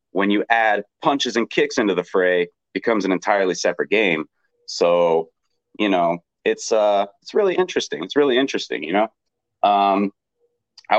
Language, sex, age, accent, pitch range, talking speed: English, male, 30-49, American, 95-155 Hz, 160 wpm